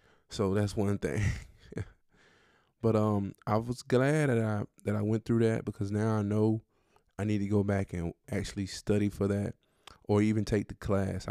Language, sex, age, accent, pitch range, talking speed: English, male, 20-39, American, 100-110 Hz, 185 wpm